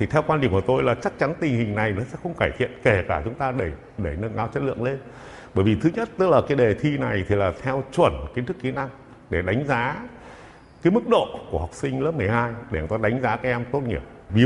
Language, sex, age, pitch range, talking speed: Vietnamese, male, 60-79, 110-160 Hz, 280 wpm